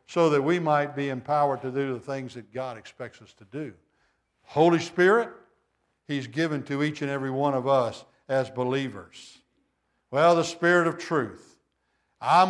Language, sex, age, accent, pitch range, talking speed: English, male, 60-79, American, 150-185 Hz, 170 wpm